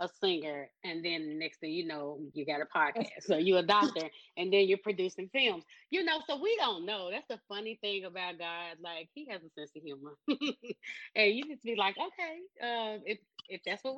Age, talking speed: 20-39, 220 wpm